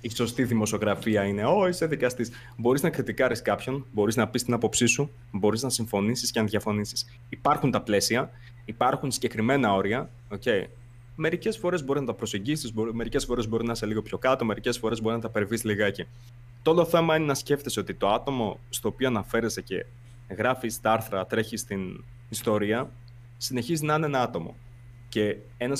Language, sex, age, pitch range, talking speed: Greek, male, 20-39, 110-130 Hz, 175 wpm